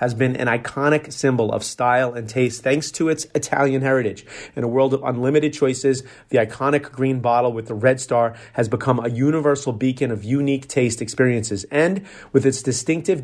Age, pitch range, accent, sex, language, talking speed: 30-49, 125-145 Hz, American, male, English, 185 wpm